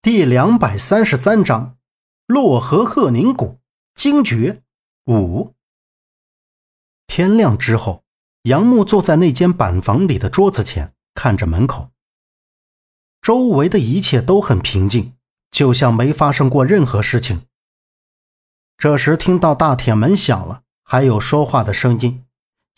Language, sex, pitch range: Chinese, male, 120-160 Hz